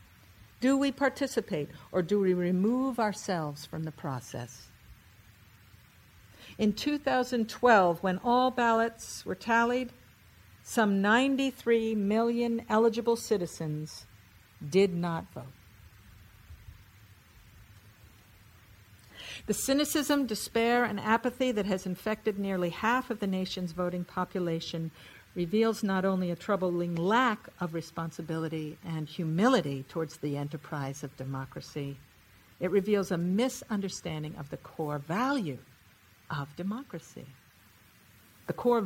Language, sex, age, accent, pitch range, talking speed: English, female, 60-79, American, 140-230 Hz, 105 wpm